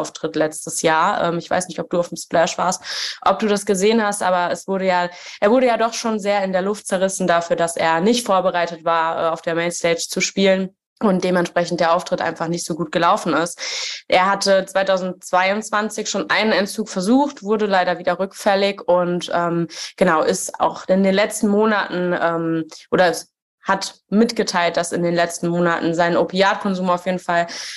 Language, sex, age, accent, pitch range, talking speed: German, female, 20-39, German, 170-205 Hz, 190 wpm